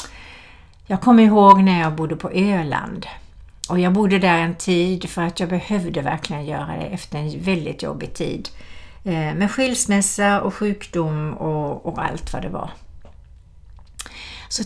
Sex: female